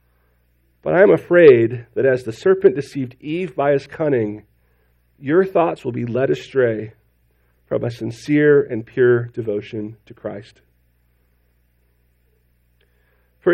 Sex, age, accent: male, 40-59, American